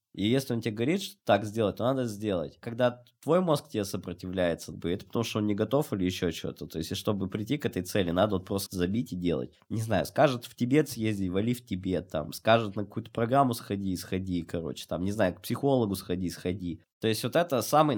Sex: male